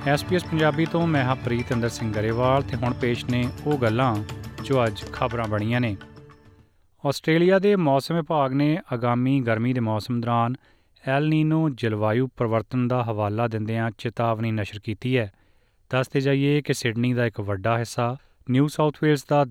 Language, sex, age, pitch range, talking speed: Punjabi, male, 30-49, 110-135 Hz, 165 wpm